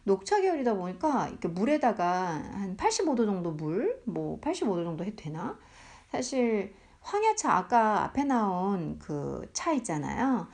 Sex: female